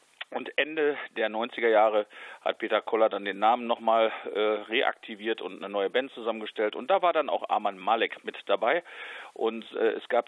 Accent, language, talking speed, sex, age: German, German, 185 wpm, male, 40-59